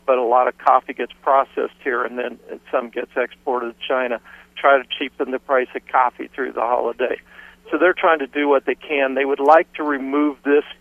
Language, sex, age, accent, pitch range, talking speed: English, male, 50-69, American, 125-140 Hz, 215 wpm